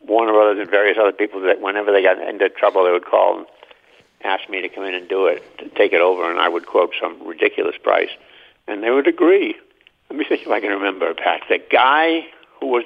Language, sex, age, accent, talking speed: English, male, 60-79, American, 240 wpm